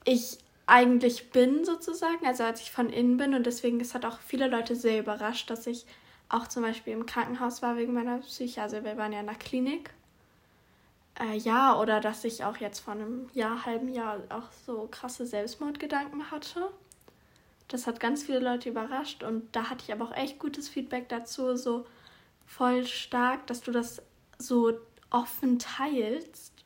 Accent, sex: German, female